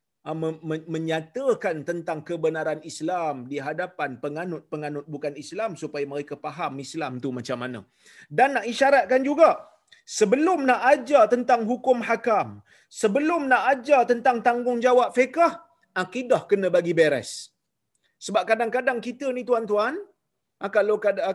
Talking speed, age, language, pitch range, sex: 120 wpm, 30-49, Malayalam, 170-250 Hz, male